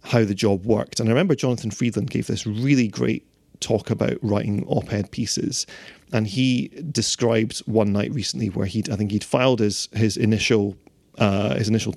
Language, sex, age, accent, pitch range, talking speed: English, male, 30-49, British, 110-130 Hz, 185 wpm